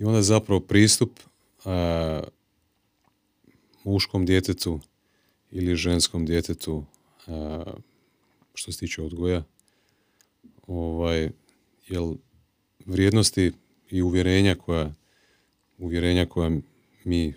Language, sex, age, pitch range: Croatian, male, 30-49, 80-95 Hz